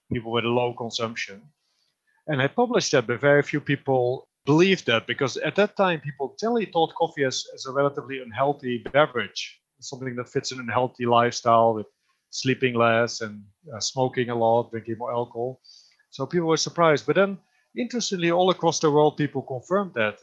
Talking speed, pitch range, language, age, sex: 175 wpm, 115-150 Hz, English, 30-49, male